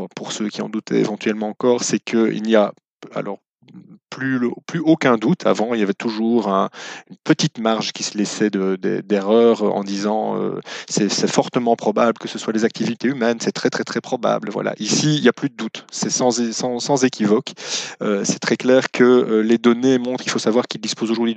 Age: 20-39